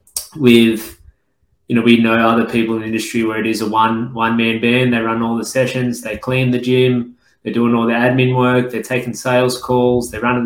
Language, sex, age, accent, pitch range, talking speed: English, male, 20-39, Australian, 110-125 Hz, 225 wpm